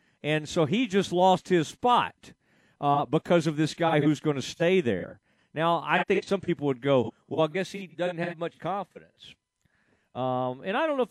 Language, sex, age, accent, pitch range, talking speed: English, male, 40-59, American, 145-185 Hz, 205 wpm